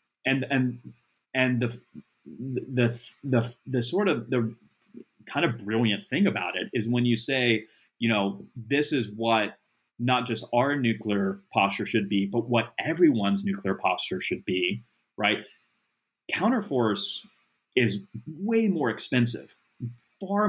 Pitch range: 105-125 Hz